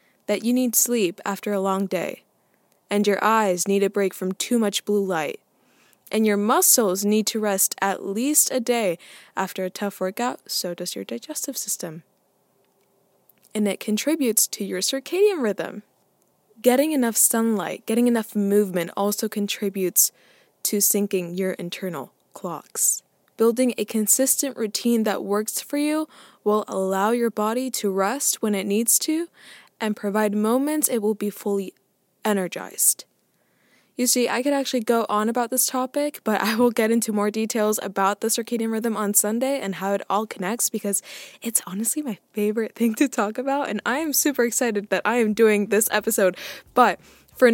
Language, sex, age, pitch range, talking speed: English, female, 20-39, 200-255 Hz, 170 wpm